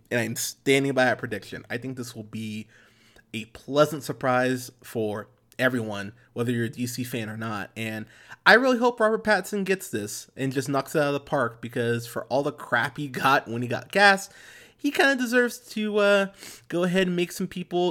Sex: male